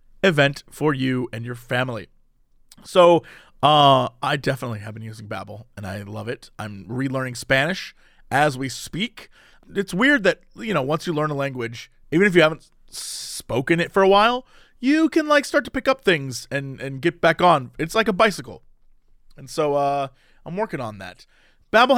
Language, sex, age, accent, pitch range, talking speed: English, male, 30-49, American, 140-230 Hz, 185 wpm